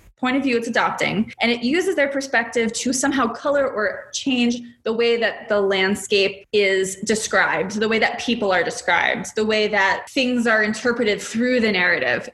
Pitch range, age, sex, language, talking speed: 220-290 Hz, 20-39, female, English, 180 wpm